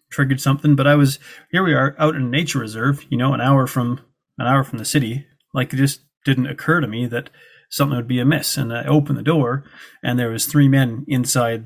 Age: 30-49